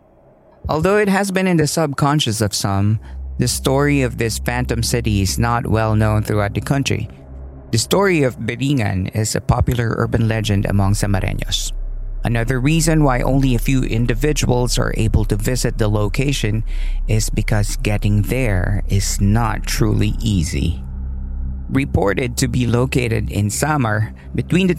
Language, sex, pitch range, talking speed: Filipino, male, 100-135 Hz, 150 wpm